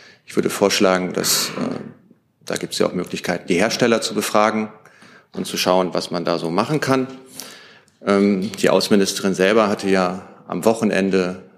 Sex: male